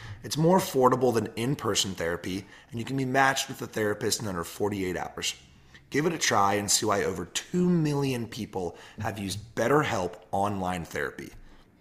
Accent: American